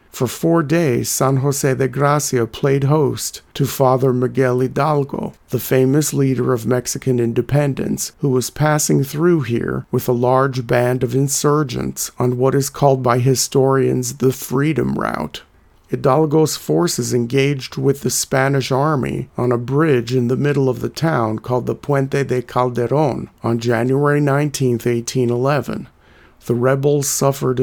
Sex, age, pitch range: male, 50-69, 125-145 Hz